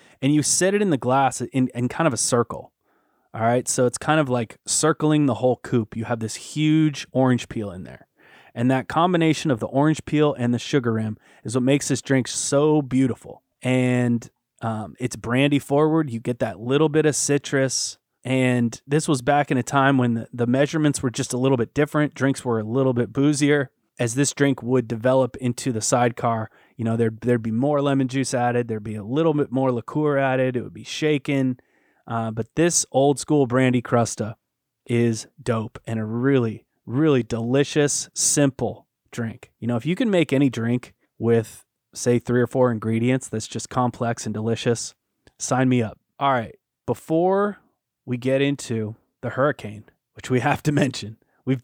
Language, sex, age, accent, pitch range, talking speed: English, male, 20-39, American, 120-145 Hz, 195 wpm